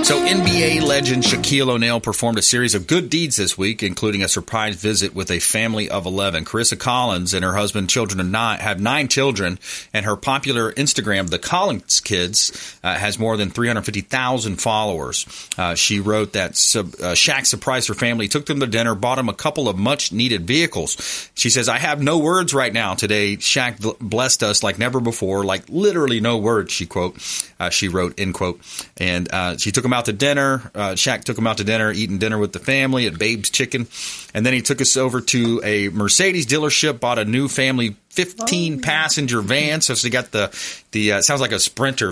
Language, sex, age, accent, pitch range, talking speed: English, male, 40-59, American, 100-130 Hz, 210 wpm